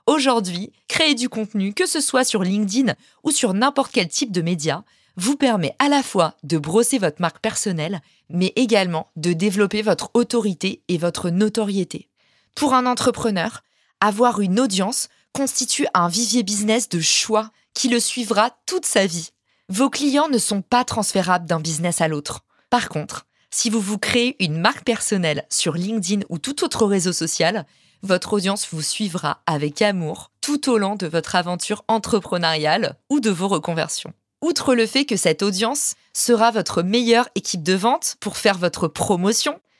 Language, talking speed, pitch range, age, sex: French, 170 wpm, 175-240 Hz, 20-39, female